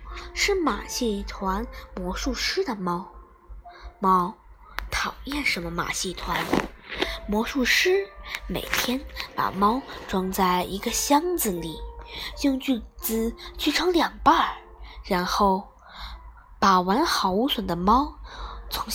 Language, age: Chinese, 20-39